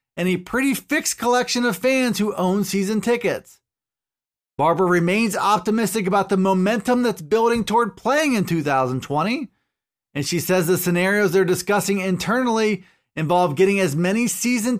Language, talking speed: English, 145 wpm